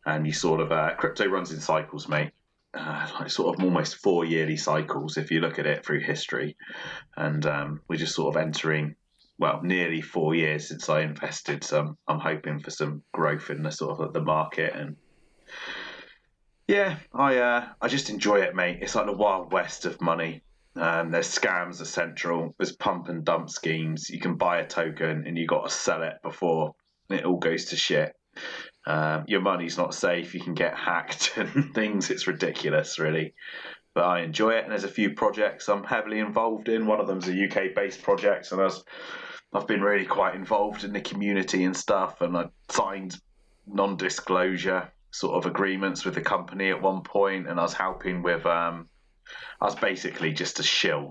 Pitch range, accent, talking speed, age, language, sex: 80-100 Hz, British, 190 wpm, 30-49, English, male